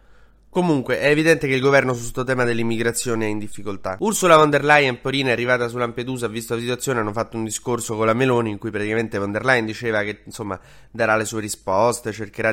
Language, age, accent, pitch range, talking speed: Italian, 20-39, native, 115-140 Hz, 220 wpm